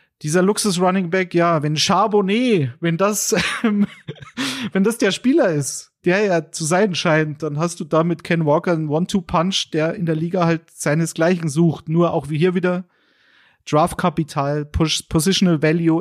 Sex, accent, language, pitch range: male, German, German, 150-195 Hz